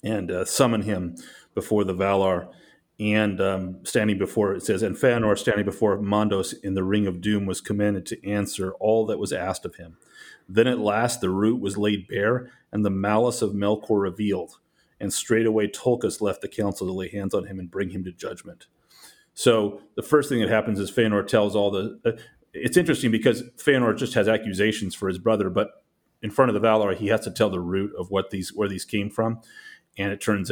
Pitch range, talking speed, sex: 95-110 Hz, 210 wpm, male